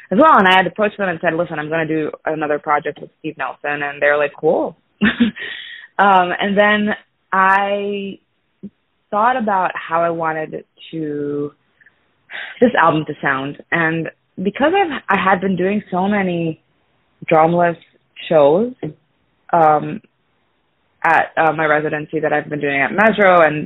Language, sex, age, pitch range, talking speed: English, female, 20-39, 150-195 Hz, 150 wpm